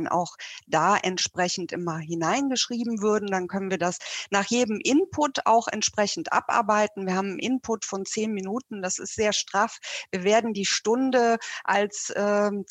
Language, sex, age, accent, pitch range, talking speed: German, female, 50-69, German, 190-230 Hz, 155 wpm